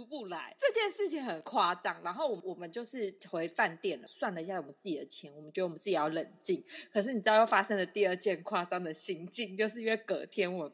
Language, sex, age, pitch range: Chinese, female, 30-49, 185-295 Hz